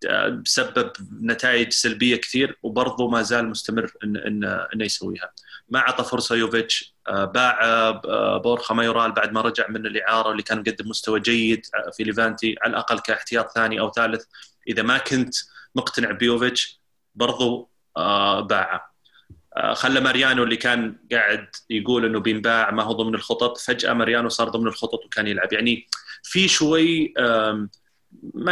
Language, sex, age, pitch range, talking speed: Arabic, male, 30-49, 110-130 Hz, 140 wpm